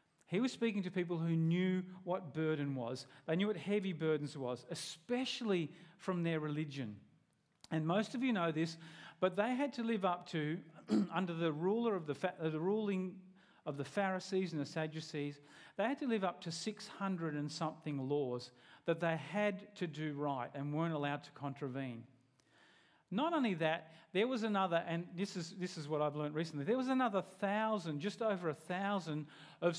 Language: English